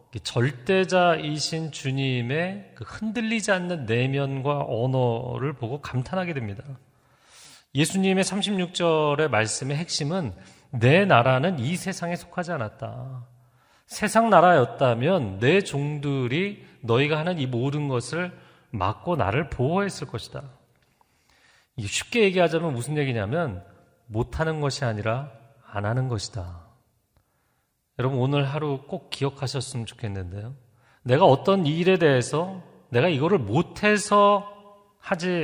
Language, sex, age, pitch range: Korean, male, 40-59, 120-170 Hz